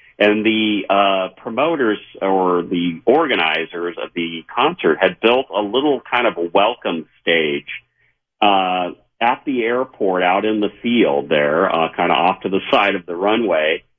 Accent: American